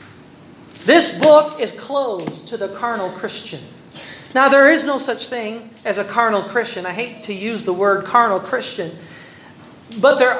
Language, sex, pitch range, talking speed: Filipino, male, 230-295 Hz, 160 wpm